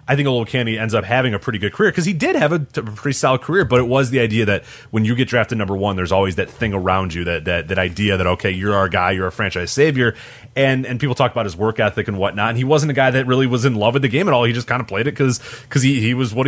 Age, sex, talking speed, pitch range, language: 30-49, male, 325 wpm, 100-130 Hz, English